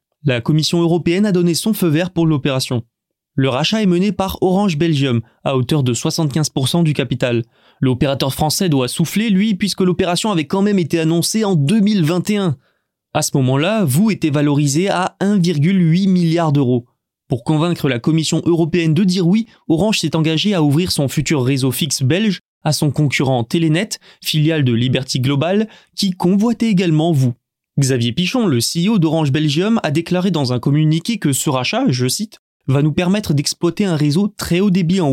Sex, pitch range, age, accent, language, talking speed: male, 135-180 Hz, 20-39, French, French, 175 wpm